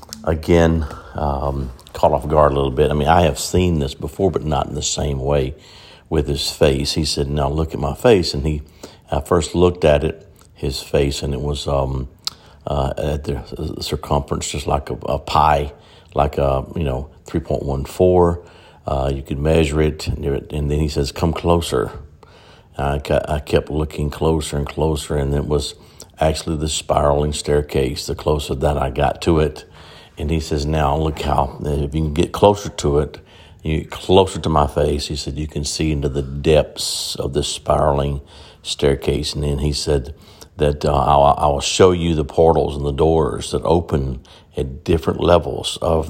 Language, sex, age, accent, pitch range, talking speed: English, male, 60-79, American, 70-80 Hz, 190 wpm